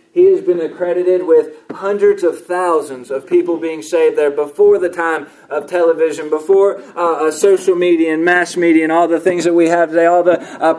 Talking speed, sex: 205 wpm, male